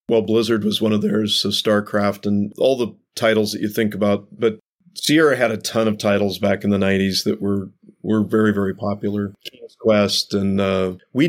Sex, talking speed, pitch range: male, 200 wpm, 105-125 Hz